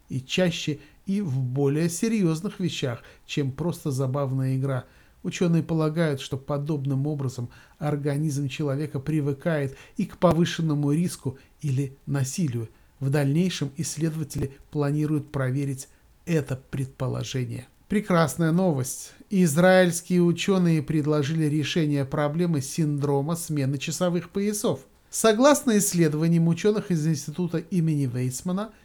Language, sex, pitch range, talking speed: Russian, male, 145-175 Hz, 105 wpm